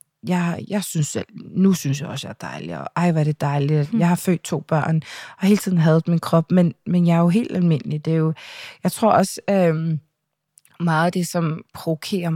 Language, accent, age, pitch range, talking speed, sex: Danish, native, 20-39, 150-180 Hz, 230 wpm, female